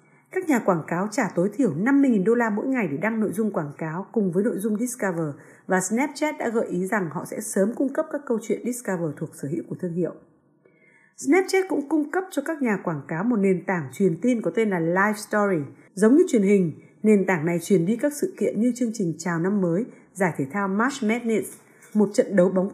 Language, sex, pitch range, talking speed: Vietnamese, female, 180-245 Hz, 240 wpm